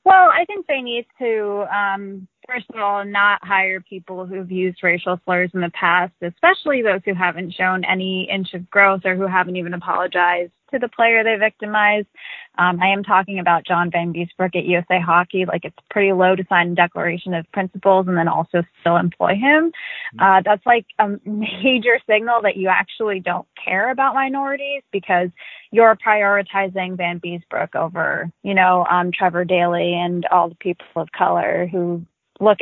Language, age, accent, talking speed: English, 20-39, American, 180 wpm